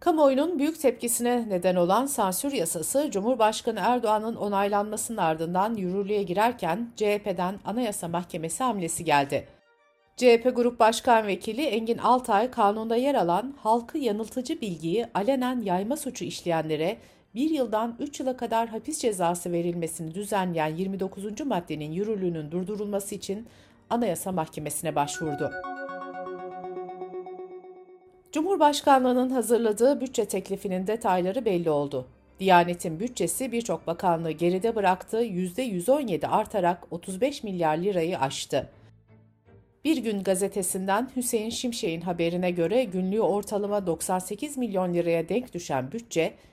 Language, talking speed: Turkish, 110 wpm